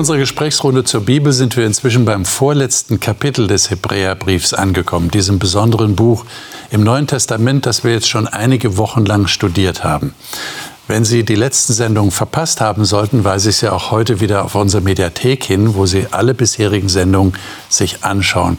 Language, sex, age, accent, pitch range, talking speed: German, male, 50-69, German, 100-130 Hz, 175 wpm